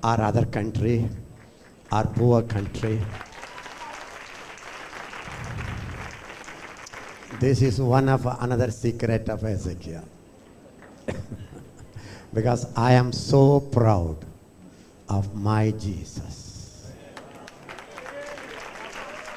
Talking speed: 70 wpm